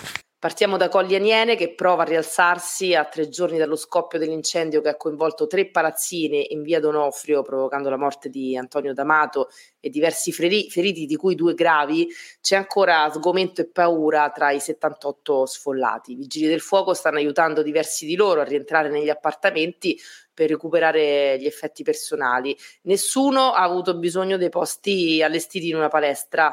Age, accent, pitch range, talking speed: 30-49, native, 150-175 Hz, 165 wpm